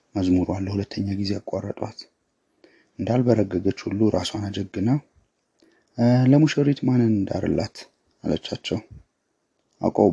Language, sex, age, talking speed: Amharic, male, 30-49, 75 wpm